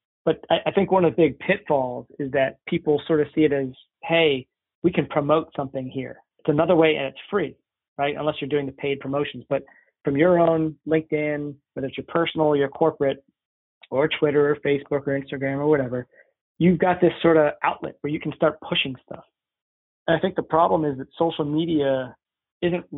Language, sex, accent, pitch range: English, male, American, 135-160 Hz